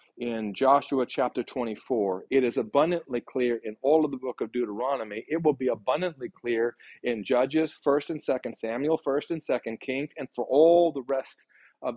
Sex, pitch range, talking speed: male, 120-145 Hz, 180 wpm